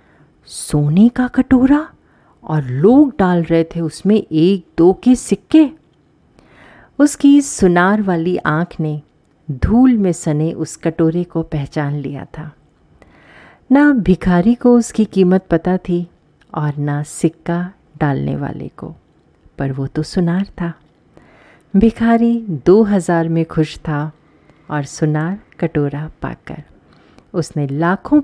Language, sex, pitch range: Hindi, female, 155-210 Hz